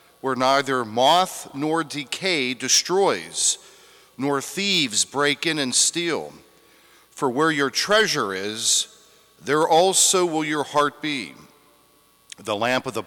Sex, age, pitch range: male, 50-69, 120-165 Hz